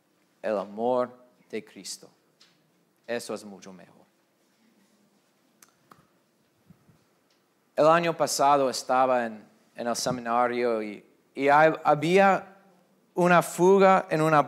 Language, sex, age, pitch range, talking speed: Spanish, male, 30-49, 130-170 Hz, 100 wpm